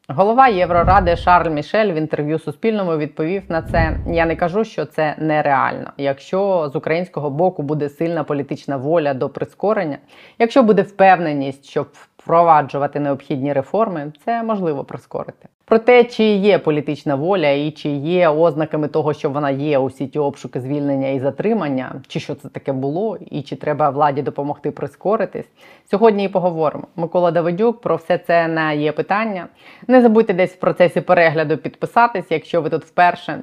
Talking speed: 160 wpm